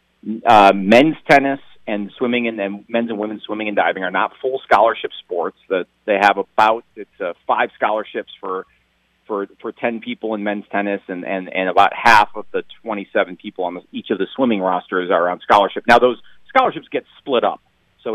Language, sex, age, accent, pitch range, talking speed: English, male, 40-59, American, 105-150 Hz, 200 wpm